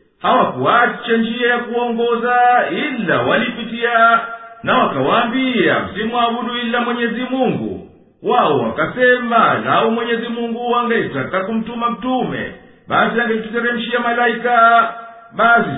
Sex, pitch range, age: male, 225-240 Hz, 50-69